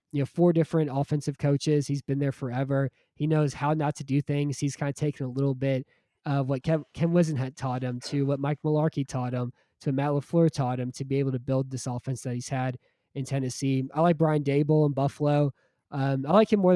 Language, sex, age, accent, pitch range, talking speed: English, male, 20-39, American, 135-150 Hz, 230 wpm